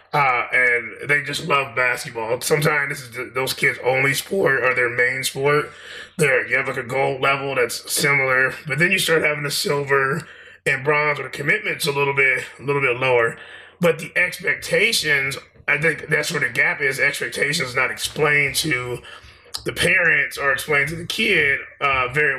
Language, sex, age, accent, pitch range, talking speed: English, male, 20-39, American, 130-160 Hz, 185 wpm